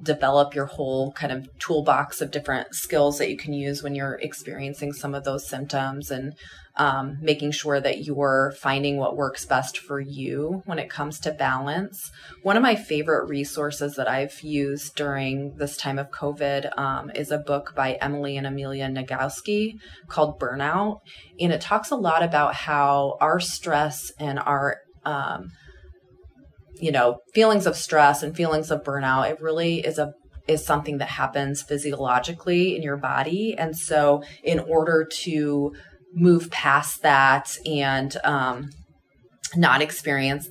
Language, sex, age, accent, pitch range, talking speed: English, female, 30-49, American, 135-155 Hz, 155 wpm